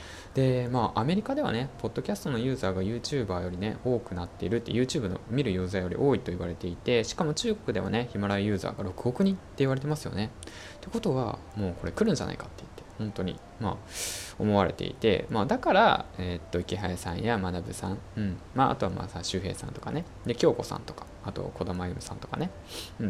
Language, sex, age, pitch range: Japanese, male, 20-39, 90-120 Hz